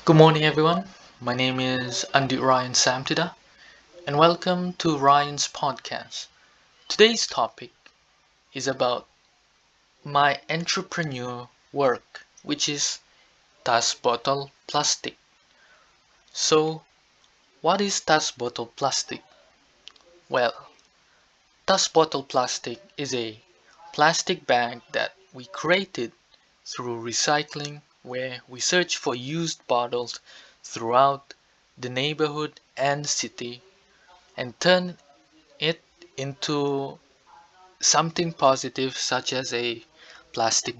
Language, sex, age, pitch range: English, male, 20-39, 130-165 Hz